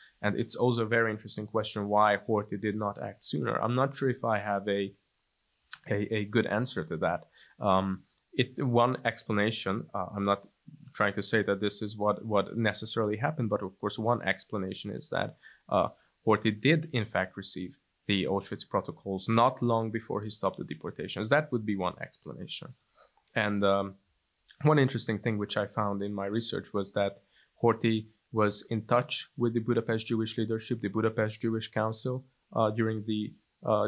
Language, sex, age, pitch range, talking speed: English, male, 20-39, 100-115 Hz, 180 wpm